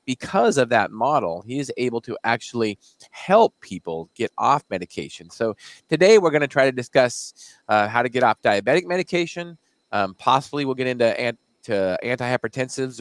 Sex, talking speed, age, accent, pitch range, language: male, 160 wpm, 30-49, American, 105-135 Hz, English